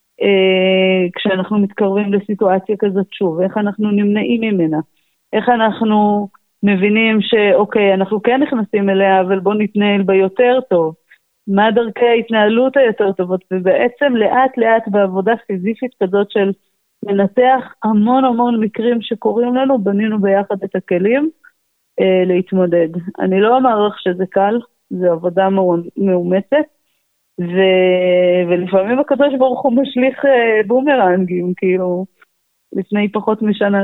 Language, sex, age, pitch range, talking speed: Hebrew, female, 30-49, 185-230 Hz, 120 wpm